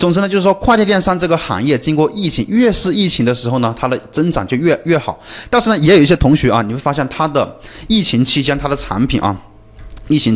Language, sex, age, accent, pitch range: Chinese, male, 30-49, native, 110-155 Hz